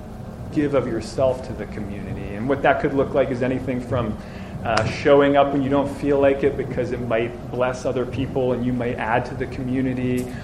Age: 30-49